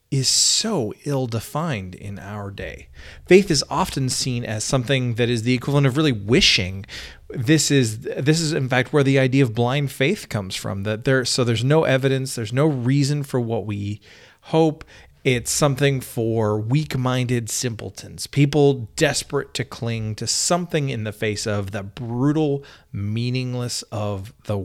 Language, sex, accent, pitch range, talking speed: English, male, American, 105-140 Hz, 165 wpm